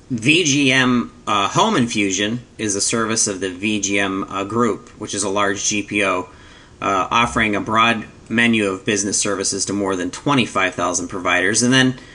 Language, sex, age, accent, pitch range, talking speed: English, male, 40-59, American, 100-125 Hz, 160 wpm